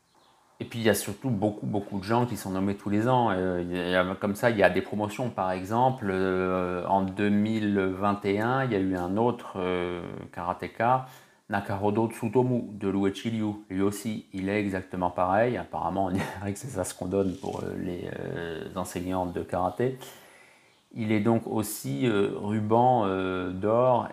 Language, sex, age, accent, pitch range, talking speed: French, male, 30-49, French, 90-105 Hz, 160 wpm